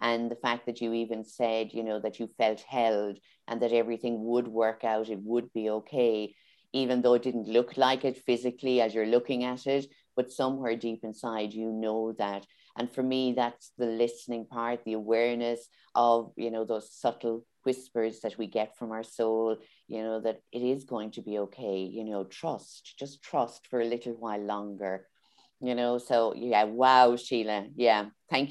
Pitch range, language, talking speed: 110-125 Hz, English, 190 wpm